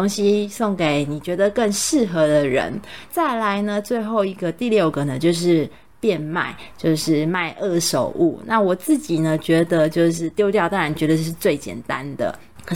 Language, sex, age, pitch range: Chinese, female, 20-39, 160-215 Hz